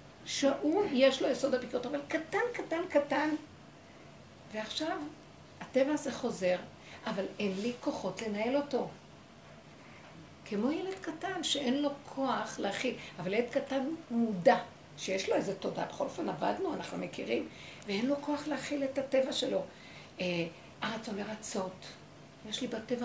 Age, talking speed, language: 60-79, 135 wpm, Hebrew